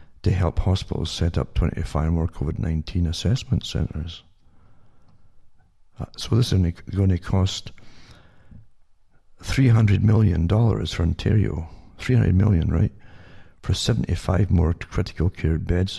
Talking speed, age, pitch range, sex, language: 110 wpm, 60-79, 85-105 Hz, male, English